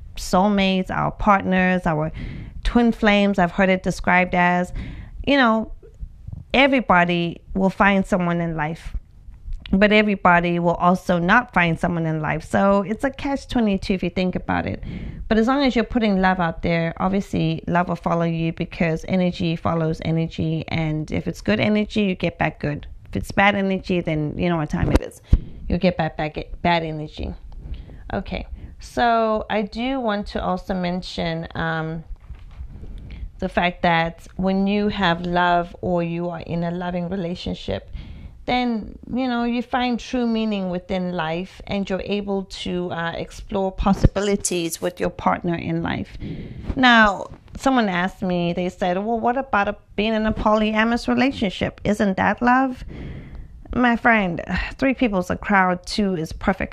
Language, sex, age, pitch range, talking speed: English, female, 30-49, 165-210 Hz, 165 wpm